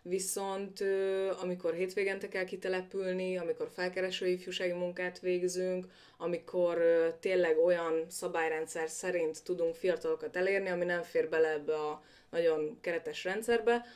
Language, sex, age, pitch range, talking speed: Hungarian, female, 20-39, 170-230 Hz, 110 wpm